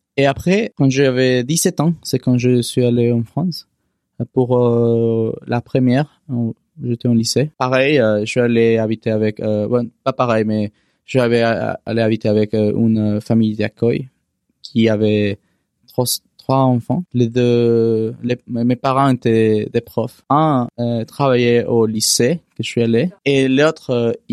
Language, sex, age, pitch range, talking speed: French, male, 20-39, 115-130 Hz, 160 wpm